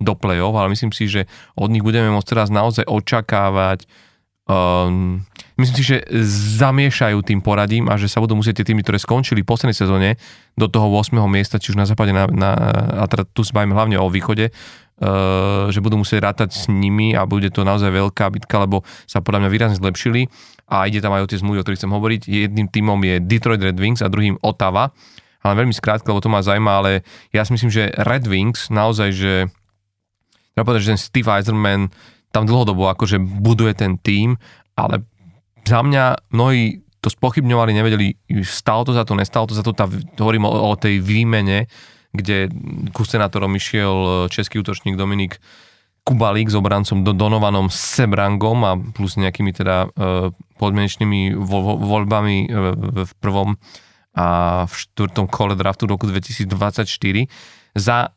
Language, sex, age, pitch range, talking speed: Slovak, male, 30-49, 100-110 Hz, 170 wpm